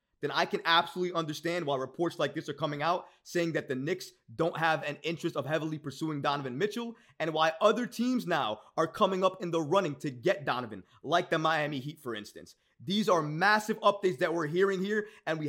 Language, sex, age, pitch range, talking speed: English, male, 30-49, 145-185 Hz, 215 wpm